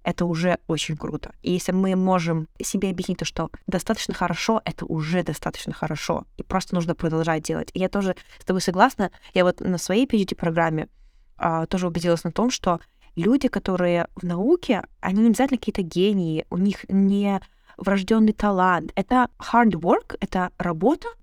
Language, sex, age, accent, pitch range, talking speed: Russian, female, 20-39, native, 170-215 Hz, 160 wpm